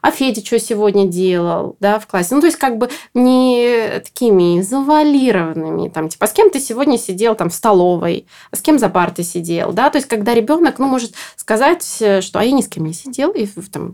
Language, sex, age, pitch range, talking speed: Russian, female, 20-39, 175-240 Hz, 220 wpm